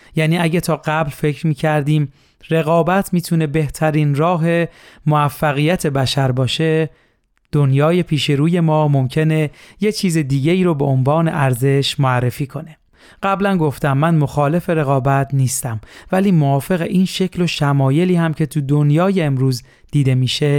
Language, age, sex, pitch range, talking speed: Persian, 30-49, male, 140-170 Hz, 135 wpm